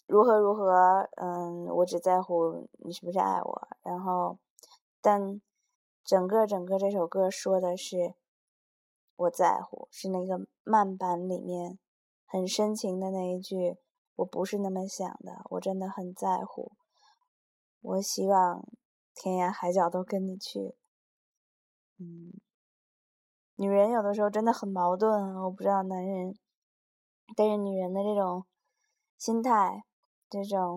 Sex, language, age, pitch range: female, Chinese, 20-39, 180-210 Hz